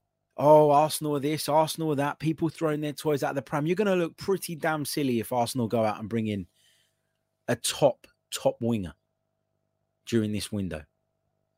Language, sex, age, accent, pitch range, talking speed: English, male, 20-39, British, 110-140 Hz, 170 wpm